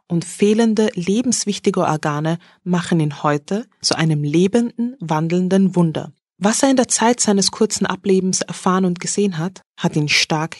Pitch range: 170-215 Hz